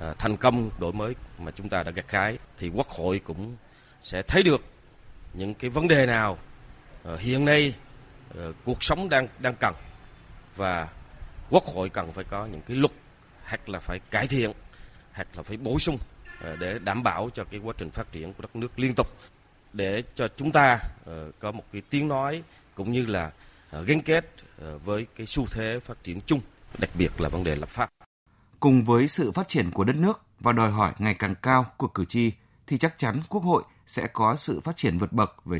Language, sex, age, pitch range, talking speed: Vietnamese, male, 30-49, 95-130 Hz, 200 wpm